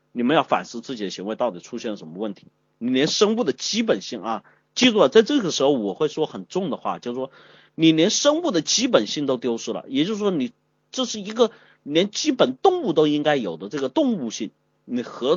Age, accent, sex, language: 30-49, native, male, Chinese